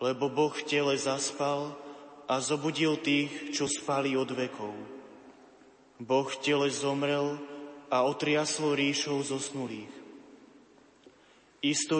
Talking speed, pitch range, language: 100 wpm, 135-150 Hz, Slovak